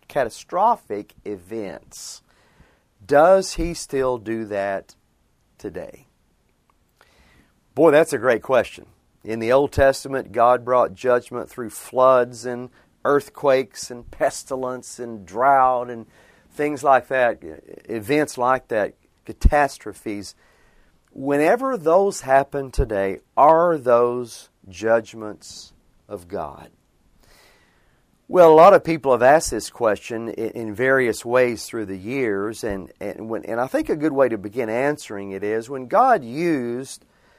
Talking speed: 120 wpm